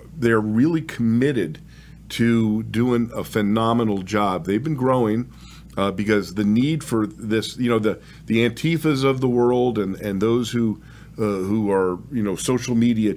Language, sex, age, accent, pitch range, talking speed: English, male, 50-69, American, 100-125 Hz, 165 wpm